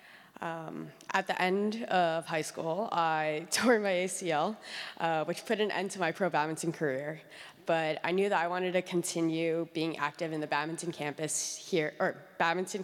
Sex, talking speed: female, 180 wpm